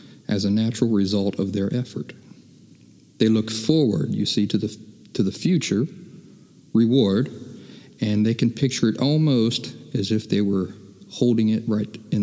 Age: 50-69